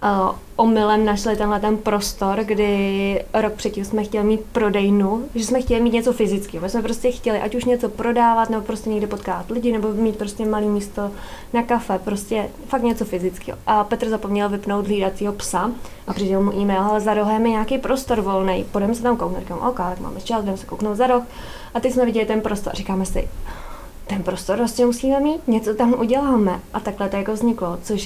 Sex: female